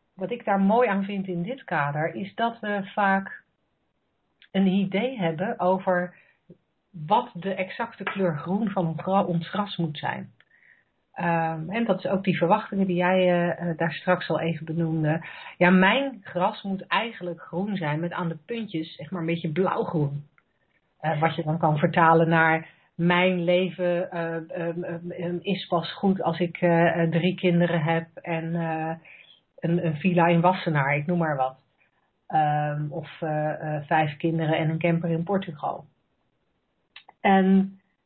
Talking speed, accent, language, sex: 160 wpm, Dutch, Dutch, female